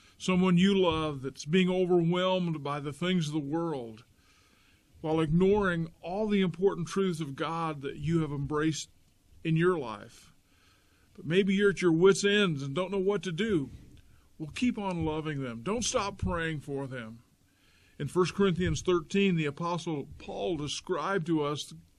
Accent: American